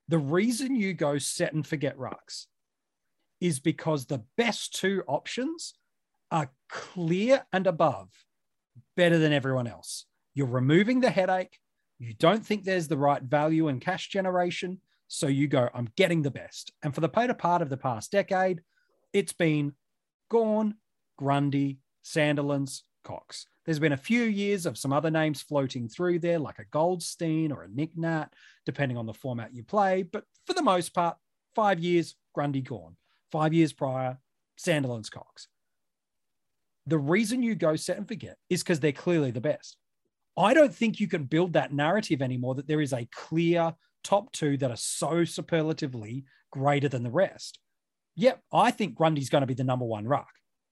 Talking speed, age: 170 wpm, 30-49